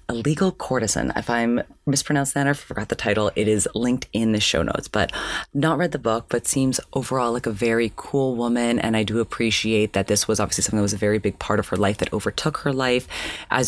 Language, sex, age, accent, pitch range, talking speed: English, female, 30-49, American, 110-140 Hz, 235 wpm